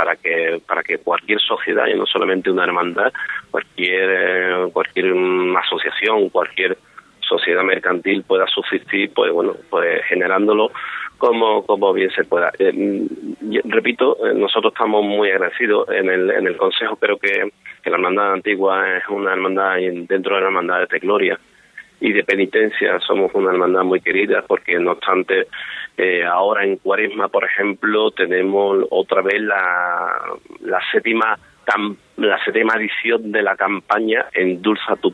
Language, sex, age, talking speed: Spanish, male, 30-49, 145 wpm